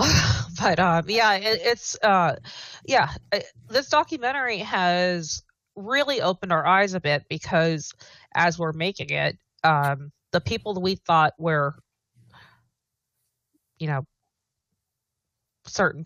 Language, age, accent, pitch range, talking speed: English, 30-49, American, 145-185 Hz, 110 wpm